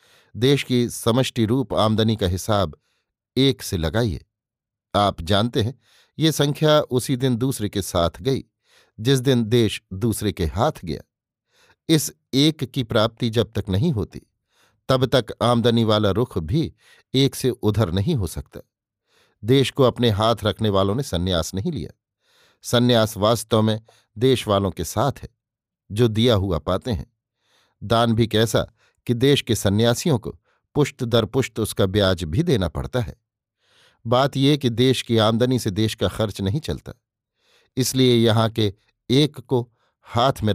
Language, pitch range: Hindi, 105-130 Hz